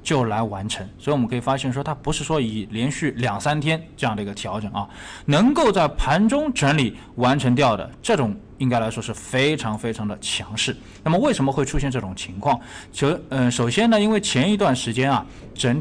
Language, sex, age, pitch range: Chinese, male, 20-39, 110-140 Hz